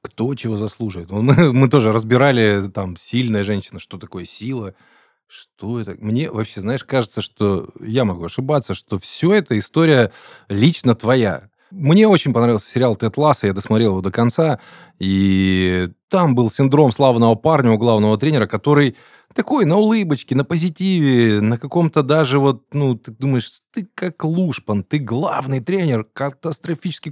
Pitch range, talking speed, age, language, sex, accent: 105-145 Hz, 150 wpm, 20-39, Russian, male, native